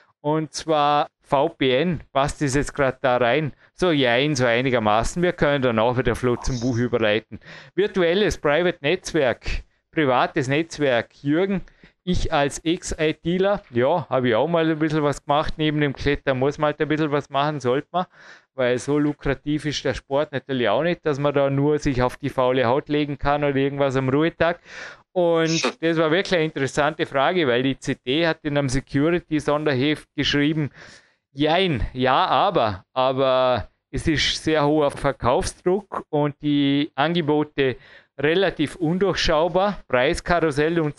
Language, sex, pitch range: German, male, 130-155 Hz